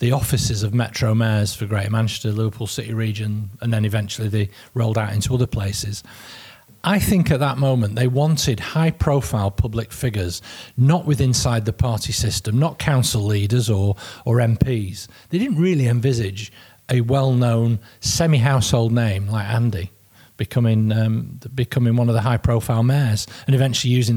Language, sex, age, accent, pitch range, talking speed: English, male, 40-59, British, 110-135 Hz, 160 wpm